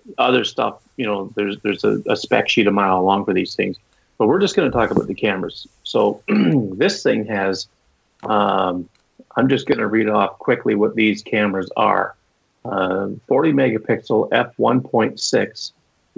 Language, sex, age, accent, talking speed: English, male, 40-59, American, 170 wpm